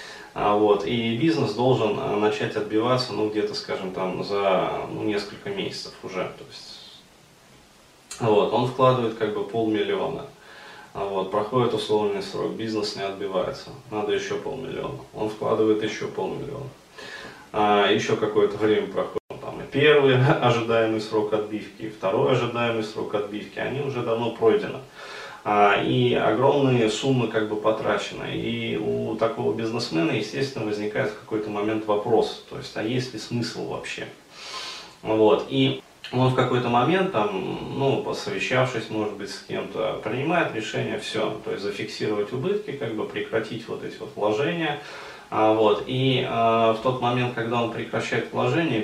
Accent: native